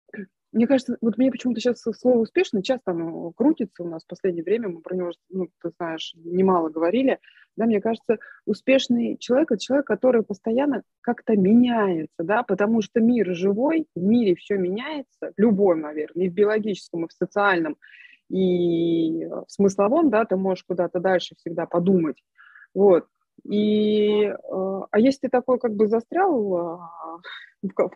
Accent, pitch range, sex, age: native, 185-240 Hz, female, 20-39